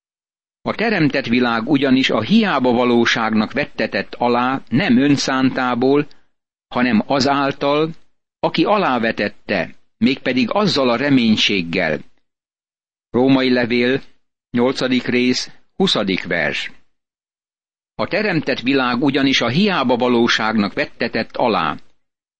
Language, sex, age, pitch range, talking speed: Hungarian, male, 60-79, 120-145 Hz, 90 wpm